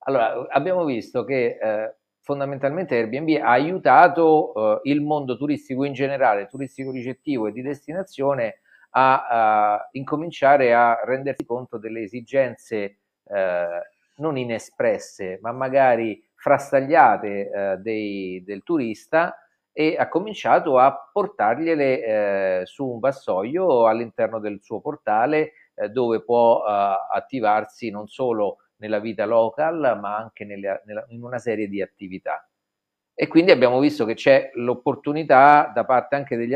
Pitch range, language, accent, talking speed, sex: 105-140 Hz, Italian, native, 125 wpm, male